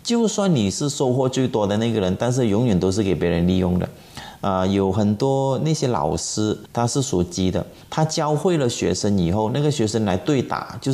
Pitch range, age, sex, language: 100-140 Hz, 30-49, male, Chinese